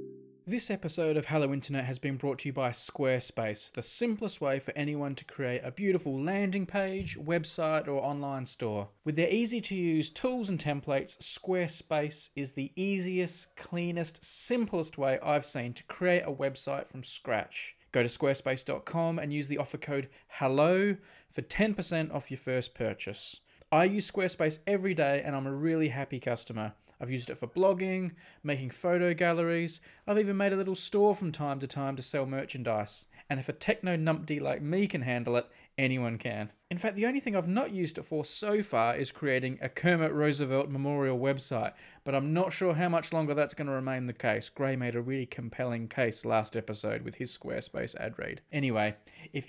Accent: Australian